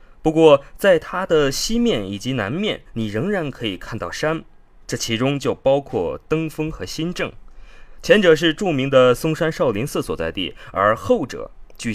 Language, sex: Chinese, male